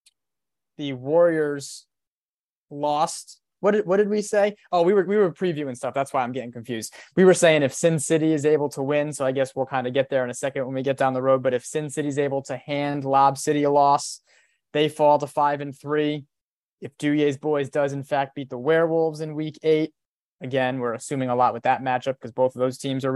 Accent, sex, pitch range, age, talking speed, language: American, male, 130-150 Hz, 20-39, 235 wpm, English